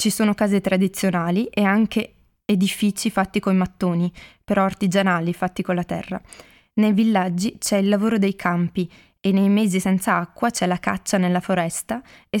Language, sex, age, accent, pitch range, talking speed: Italian, female, 20-39, native, 185-215 Hz, 165 wpm